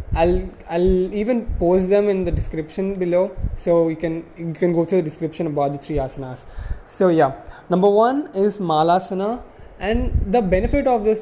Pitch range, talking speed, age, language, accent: 160-200 Hz, 170 wpm, 20-39, English, Indian